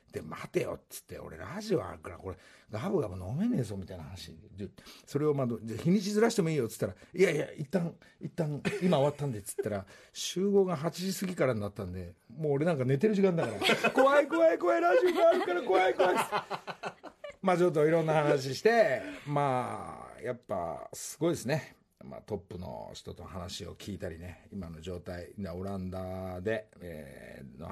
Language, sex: Japanese, male